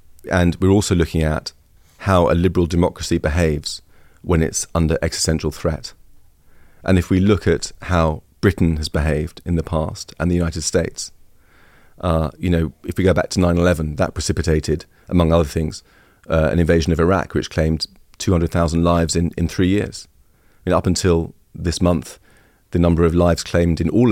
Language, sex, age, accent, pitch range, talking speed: English, male, 40-59, British, 80-95 Hz, 180 wpm